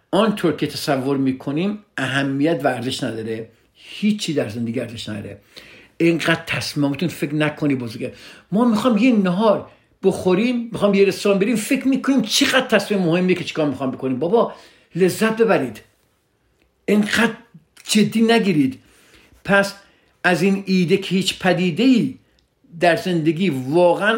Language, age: Persian, 60-79